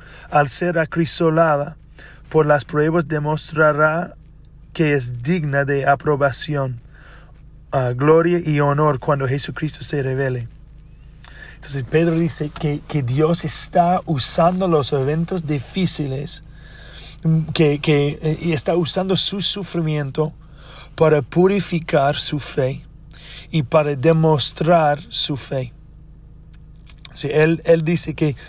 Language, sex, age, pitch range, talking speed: Spanish, male, 30-49, 145-165 Hz, 105 wpm